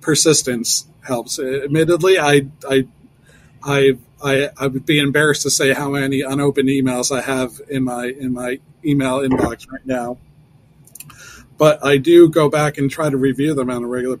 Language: English